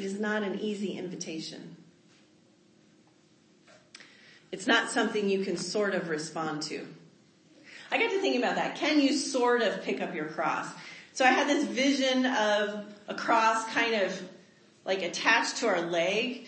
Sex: female